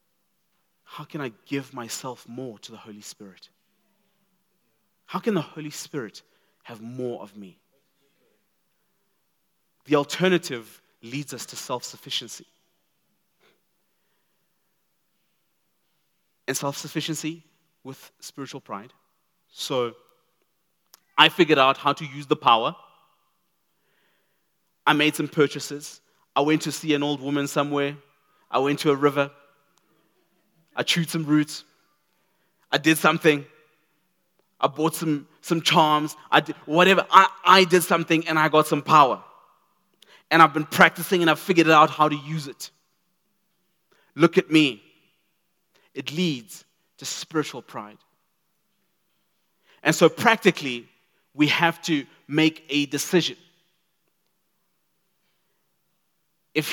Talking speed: 120 wpm